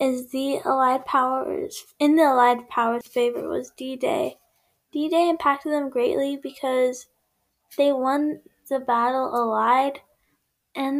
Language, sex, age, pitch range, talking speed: English, female, 10-29, 250-305 Hz, 120 wpm